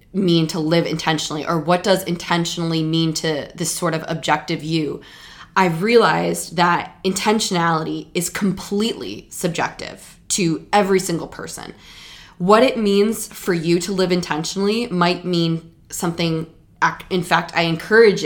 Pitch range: 165-195 Hz